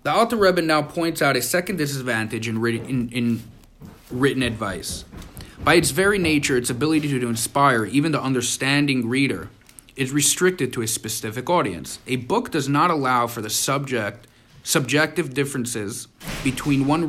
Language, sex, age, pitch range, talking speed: English, male, 30-49, 120-150 Hz, 160 wpm